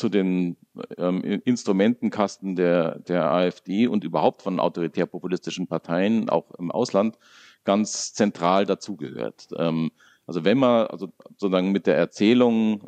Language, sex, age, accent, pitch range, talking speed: German, male, 50-69, German, 85-105 Hz, 125 wpm